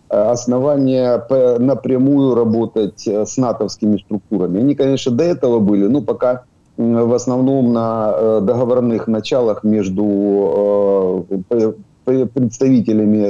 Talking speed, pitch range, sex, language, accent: 90 wpm, 105-130 Hz, male, Ukrainian, native